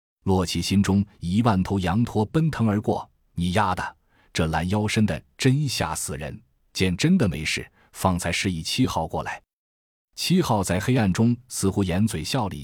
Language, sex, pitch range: Chinese, male, 85-110 Hz